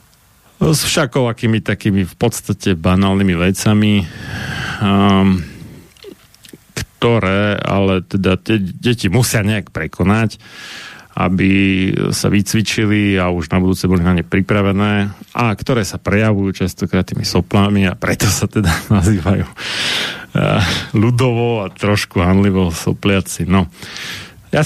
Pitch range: 95-110 Hz